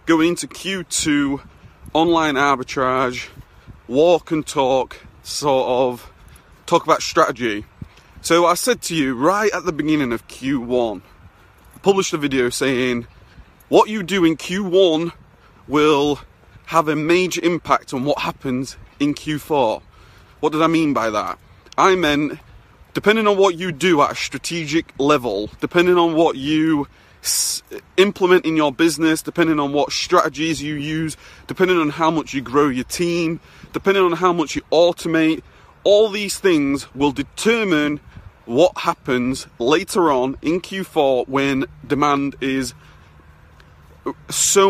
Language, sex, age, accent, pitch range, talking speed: English, male, 30-49, British, 125-170 Hz, 140 wpm